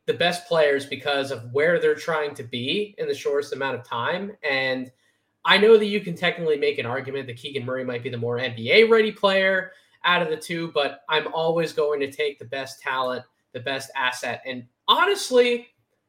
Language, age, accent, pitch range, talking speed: English, 20-39, American, 130-190 Hz, 200 wpm